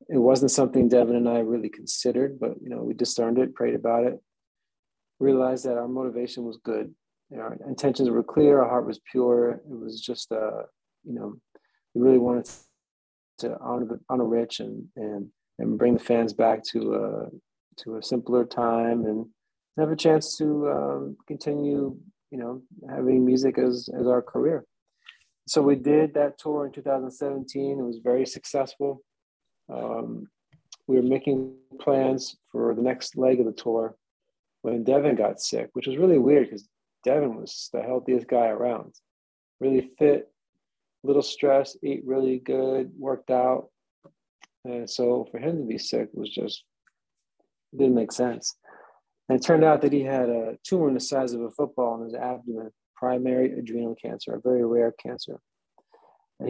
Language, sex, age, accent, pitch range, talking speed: English, male, 30-49, American, 120-135 Hz, 170 wpm